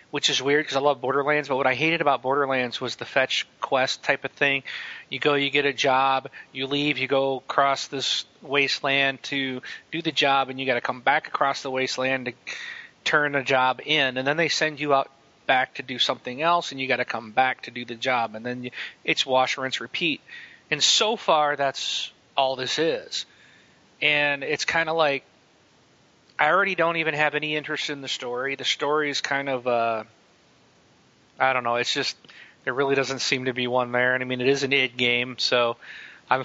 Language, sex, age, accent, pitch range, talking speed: English, male, 30-49, American, 125-145 Hz, 210 wpm